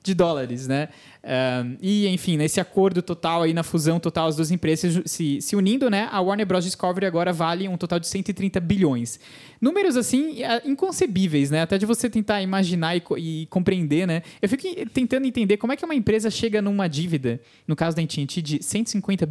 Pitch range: 160-205 Hz